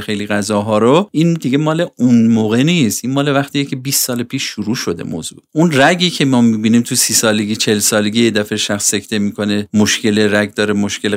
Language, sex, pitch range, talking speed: Persian, male, 105-140 Hz, 200 wpm